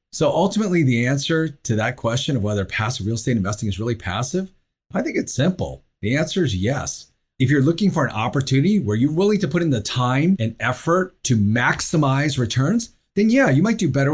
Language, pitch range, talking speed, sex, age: English, 105-150 Hz, 210 wpm, male, 30-49